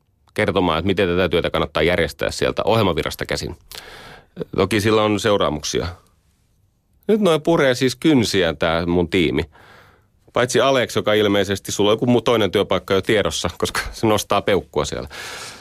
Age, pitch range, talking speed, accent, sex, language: 30-49, 95-125 Hz, 150 wpm, native, male, Finnish